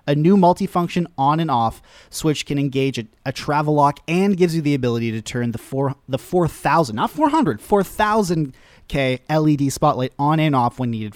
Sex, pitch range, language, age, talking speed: male, 125-165 Hz, English, 30-49, 195 wpm